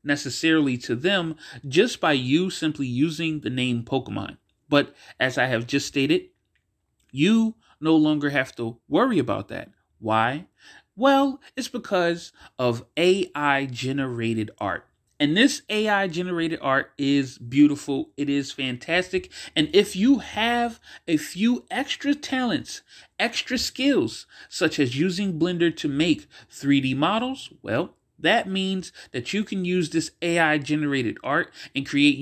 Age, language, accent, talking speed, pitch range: 30-49, English, American, 130 wpm, 115-175 Hz